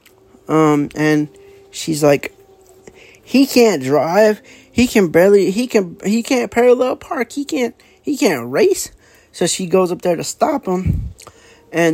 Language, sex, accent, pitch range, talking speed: English, male, American, 140-210 Hz, 150 wpm